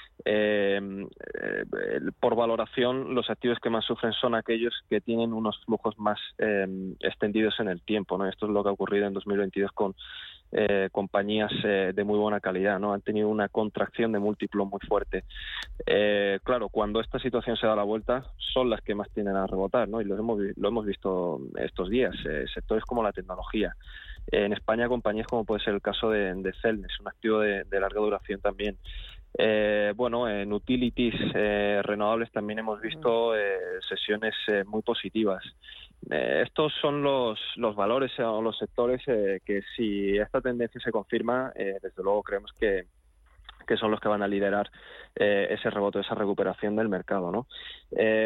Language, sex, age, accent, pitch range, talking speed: Spanish, male, 20-39, Spanish, 100-120 Hz, 180 wpm